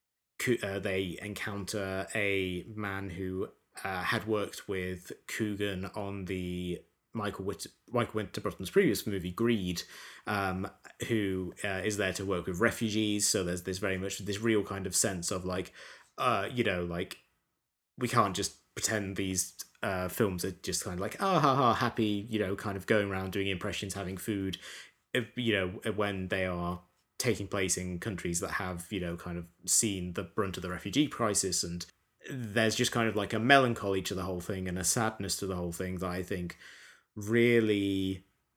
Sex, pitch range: male, 90-105 Hz